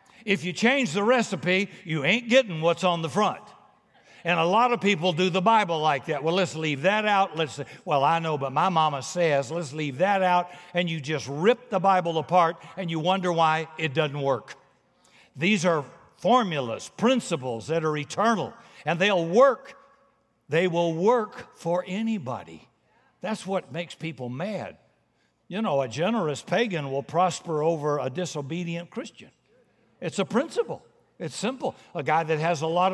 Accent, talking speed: American, 175 wpm